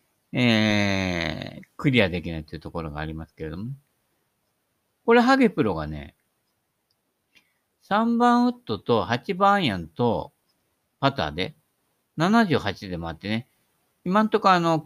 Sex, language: male, Japanese